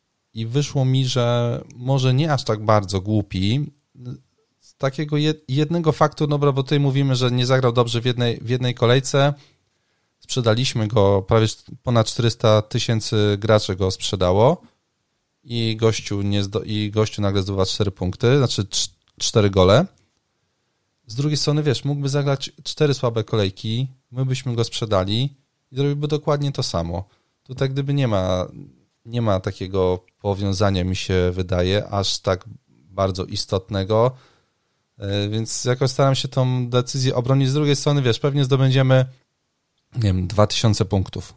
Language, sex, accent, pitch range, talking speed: Polish, male, native, 100-130 Hz, 145 wpm